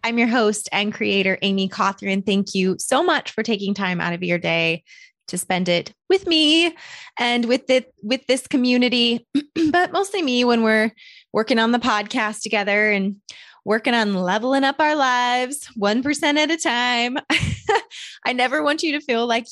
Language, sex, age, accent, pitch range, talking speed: English, female, 20-39, American, 180-235 Hz, 175 wpm